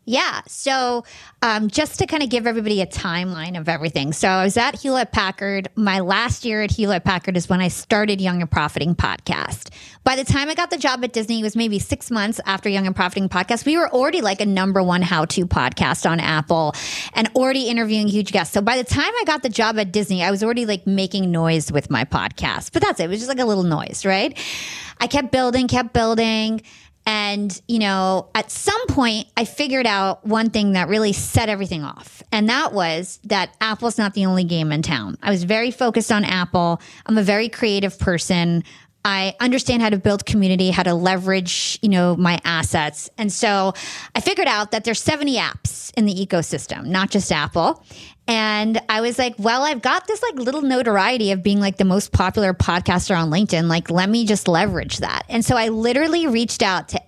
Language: English